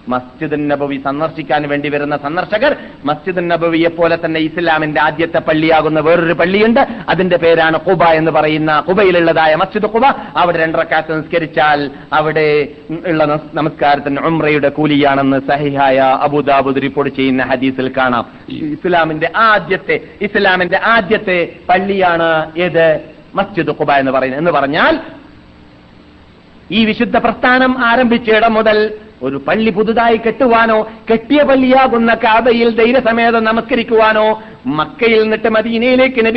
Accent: native